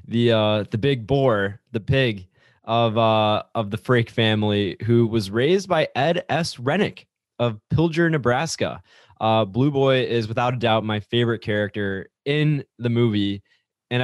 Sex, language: male, English